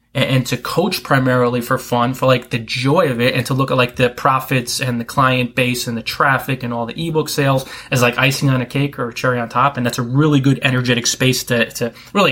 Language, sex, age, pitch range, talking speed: English, male, 20-39, 120-140 Hz, 255 wpm